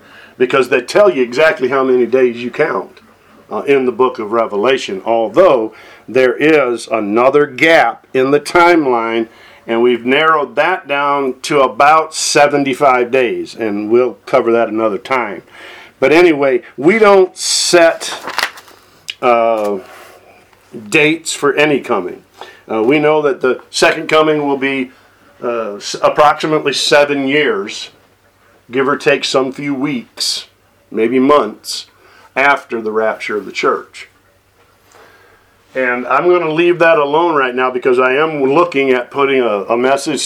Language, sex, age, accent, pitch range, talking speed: English, male, 50-69, American, 120-155 Hz, 140 wpm